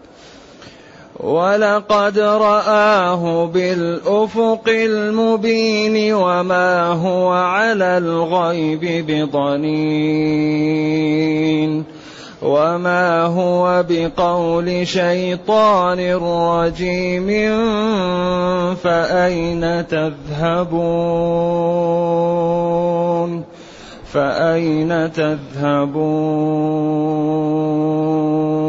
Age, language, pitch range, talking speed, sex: 30-49, Arabic, 155-180 Hz, 40 wpm, male